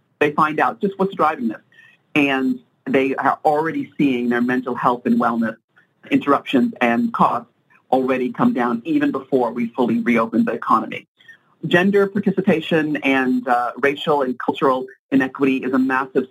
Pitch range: 125-165 Hz